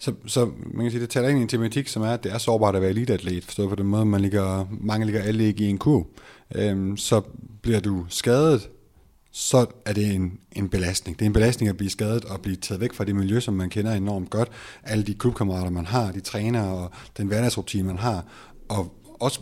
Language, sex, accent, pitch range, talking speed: Danish, male, native, 95-115 Hz, 240 wpm